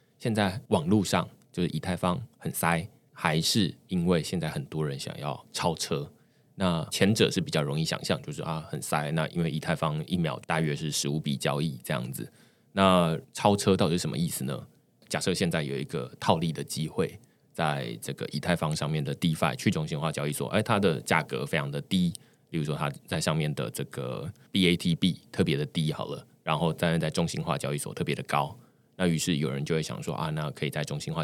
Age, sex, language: 20-39, male, Chinese